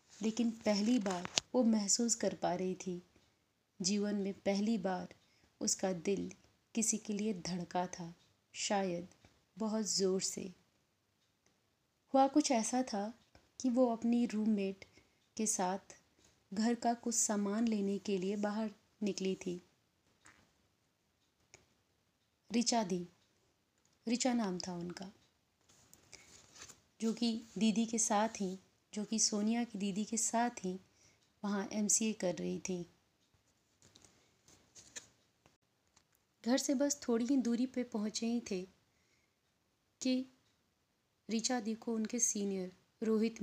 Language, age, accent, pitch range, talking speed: Hindi, 30-49, native, 190-235 Hz, 120 wpm